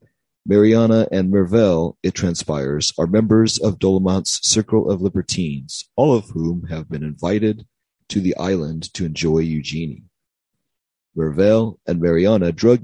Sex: male